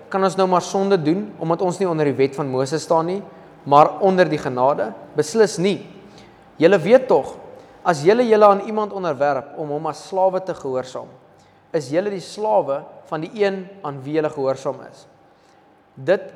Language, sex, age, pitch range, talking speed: English, male, 20-39, 165-215 Hz, 180 wpm